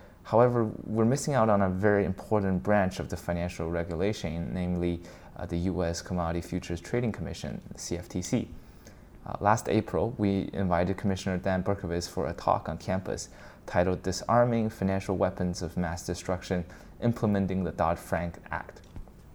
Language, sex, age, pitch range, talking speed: English, male, 20-39, 85-100 Hz, 145 wpm